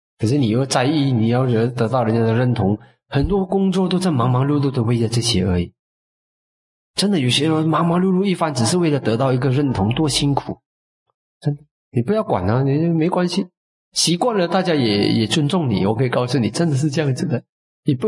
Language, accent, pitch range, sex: Chinese, native, 110-150 Hz, male